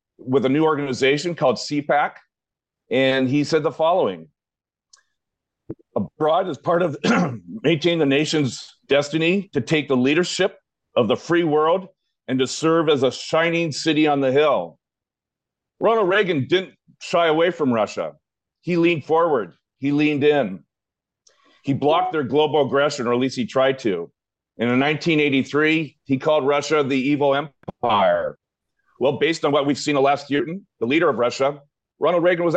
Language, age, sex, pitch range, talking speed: English, 40-59, male, 135-165 Hz, 155 wpm